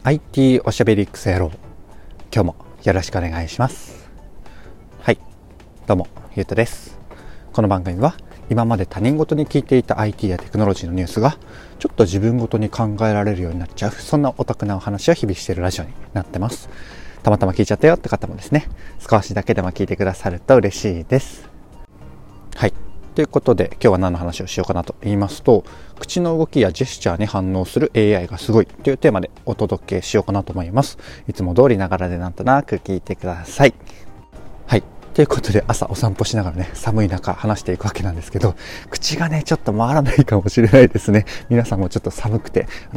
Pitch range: 95-115 Hz